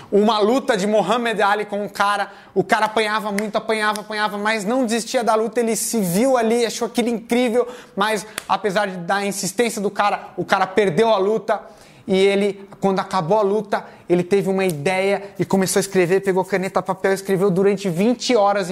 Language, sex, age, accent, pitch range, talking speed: Portuguese, male, 20-39, Brazilian, 195-220 Hz, 185 wpm